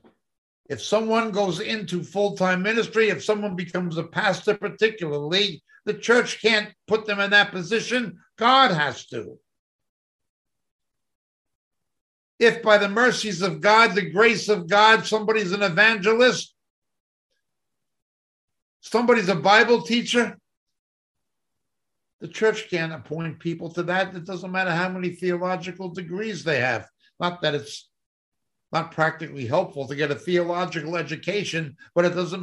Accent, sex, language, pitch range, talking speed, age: American, male, English, 140-205 Hz, 130 wpm, 60-79